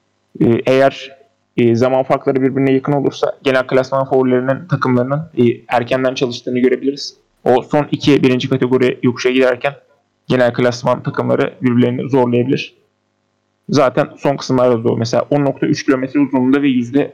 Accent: native